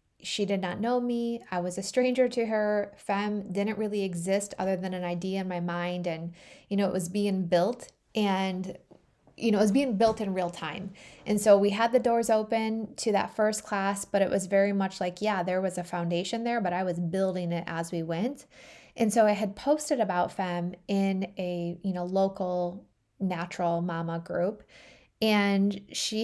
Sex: female